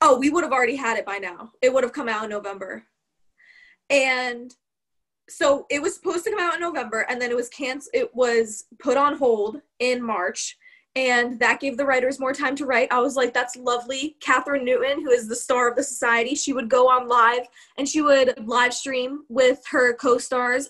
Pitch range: 240-300 Hz